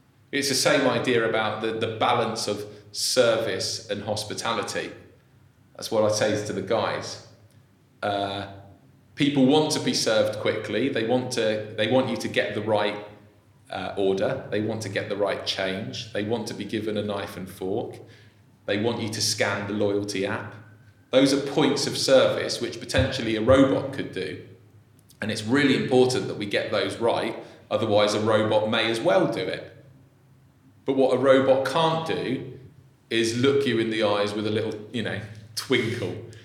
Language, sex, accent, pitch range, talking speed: English, male, British, 105-130 Hz, 175 wpm